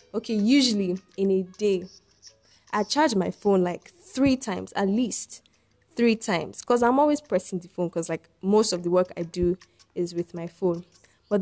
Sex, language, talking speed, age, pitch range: female, English, 185 wpm, 10-29, 180-220 Hz